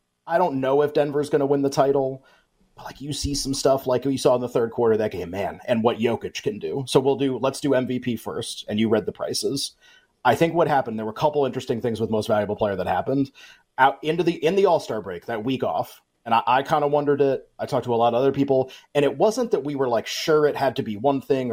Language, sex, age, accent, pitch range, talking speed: English, male, 30-49, American, 125-150 Hz, 280 wpm